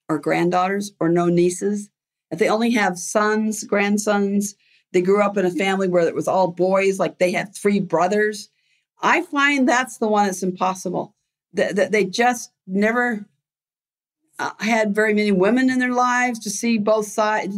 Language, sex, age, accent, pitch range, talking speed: English, female, 50-69, American, 180-225 Hz, 165 wpm